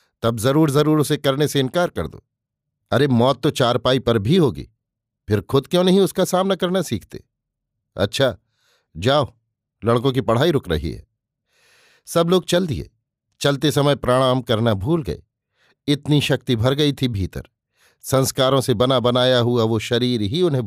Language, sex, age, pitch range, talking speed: Hindi, male, 50-69, 115-145 Hz, 165 wpm